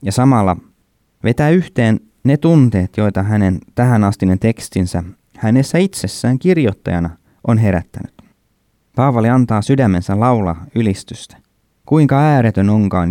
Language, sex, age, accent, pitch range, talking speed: Finnish, male, 20-39, native, 95-125 Hz, 105 wpm